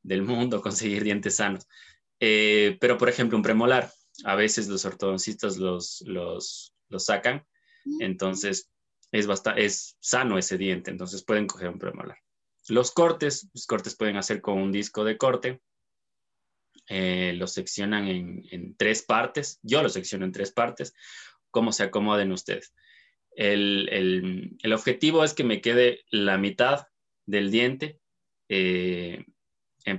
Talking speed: 145 wpm